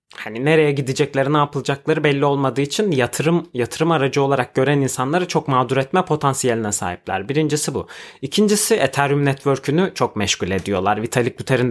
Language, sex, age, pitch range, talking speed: Turkish, male, 30-49, 120-150 Hz, 150 wpm